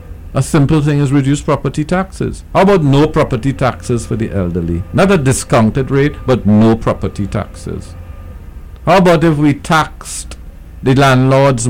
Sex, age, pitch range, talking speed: male, 60-79, 85-135 Hz, 155 wpm